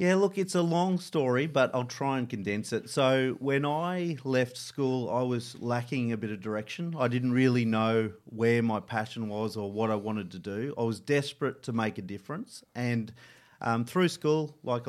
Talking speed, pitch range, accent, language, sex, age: 200 wpm, 105-125 Hz, Australian, English, male, 30-49